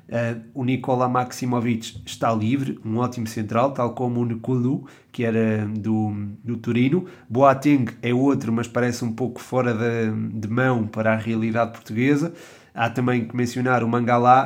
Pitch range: 110-125 Hz